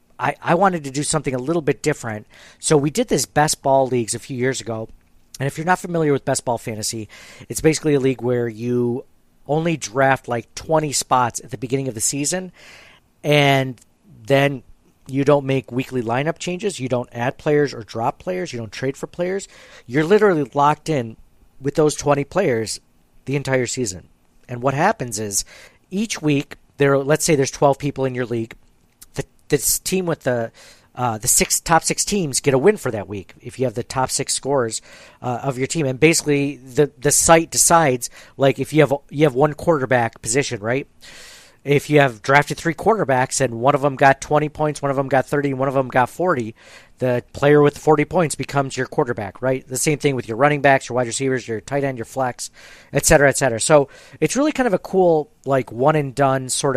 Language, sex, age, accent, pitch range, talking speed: English, male, 50-69, American, 125-150 Hz, 210 wpm